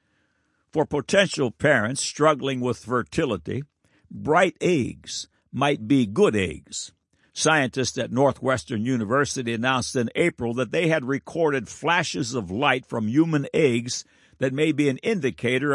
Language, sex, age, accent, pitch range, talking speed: English, male, 60-79, American, 105-135 Hz, 130 wpm